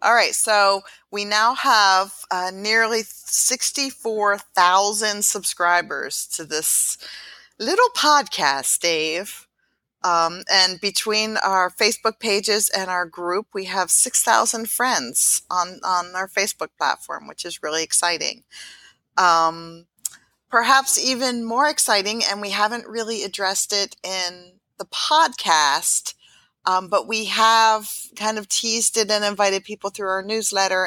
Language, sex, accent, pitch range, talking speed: English, female, American, 180-220 Hz, 125 wpm